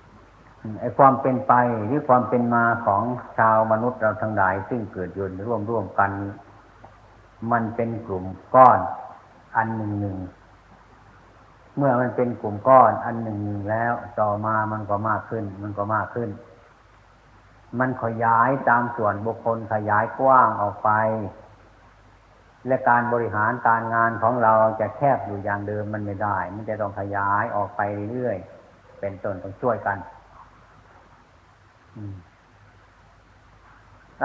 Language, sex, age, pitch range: Thai, male, 60-79, 100-120 Hz